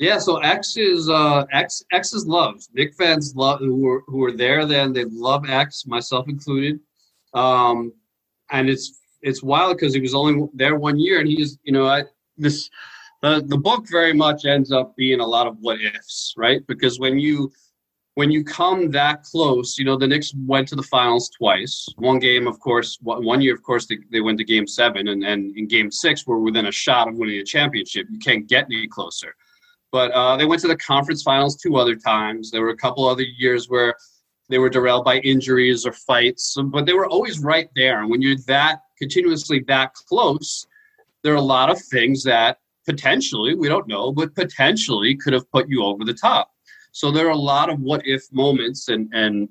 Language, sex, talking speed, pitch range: English, male, 205 wpm, 125-150 Hz